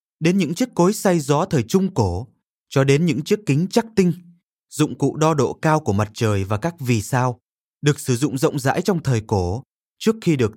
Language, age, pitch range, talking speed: Vietnamese, 20-39, 115-160 Hz, 220 wpm